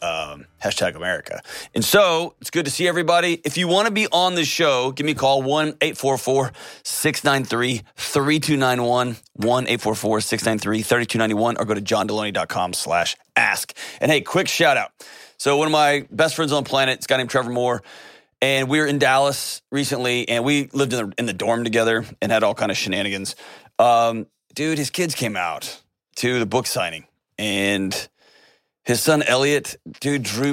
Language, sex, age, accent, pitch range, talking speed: English, male, 30-49, American, 105-140 Hz, 170 wpm